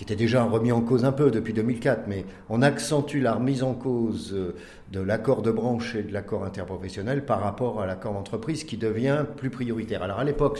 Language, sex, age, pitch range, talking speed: French, male, 50-69, 100-135 Hz, 210 wpm